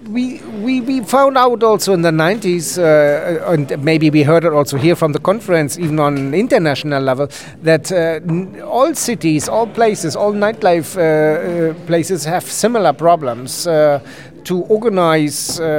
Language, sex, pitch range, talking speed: French, male, 150-200 Hz, 160 wpm